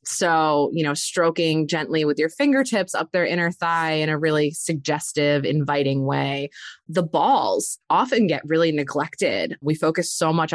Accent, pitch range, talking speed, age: American, 150-200 Hz, 160 wpm, 20-39